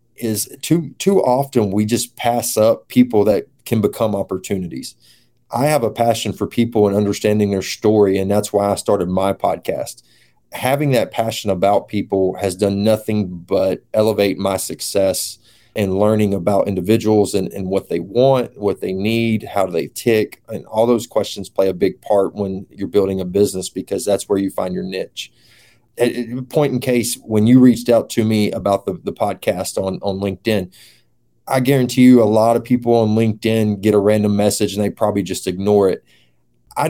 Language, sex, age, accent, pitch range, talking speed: English, male, 30-49, American, 100-120 Hz, 185 wpm